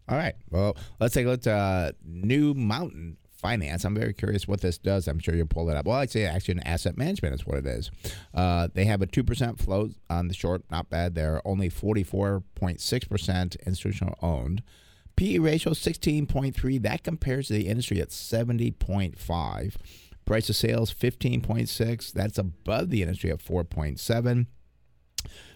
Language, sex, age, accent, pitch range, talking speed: English, male, 50-69, American, 90-110 Hz, 165 wpm